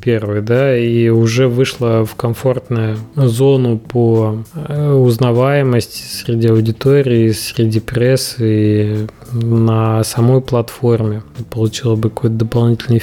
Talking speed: 100 wpm